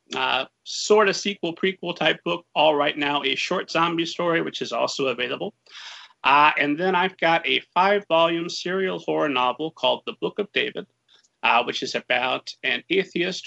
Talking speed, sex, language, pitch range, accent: 170 wpm, male, English, 140-175 Hz, American